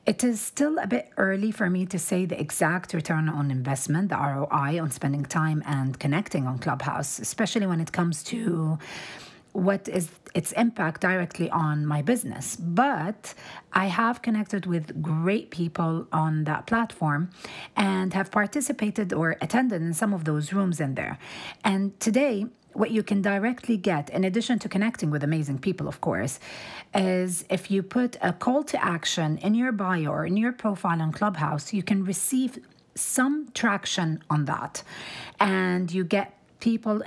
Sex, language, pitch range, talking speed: female, English, 160-215 Hz, 165 wpm